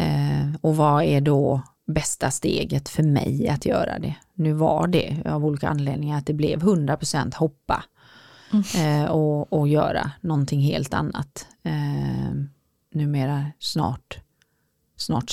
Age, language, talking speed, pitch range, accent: 30-49, Swedish, 135 wpm, 140-165 Hz, native